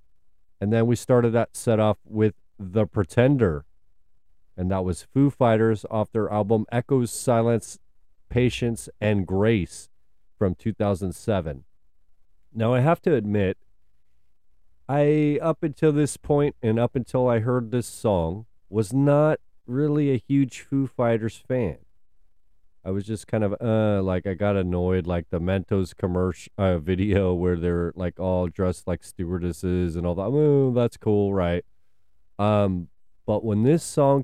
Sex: male